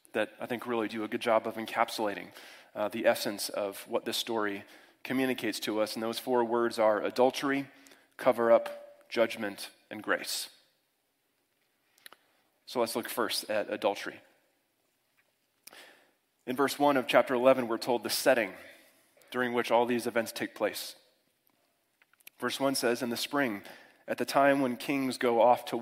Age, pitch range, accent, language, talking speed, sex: 30-49, 115-135 Hz, American, English, 155 wpm, male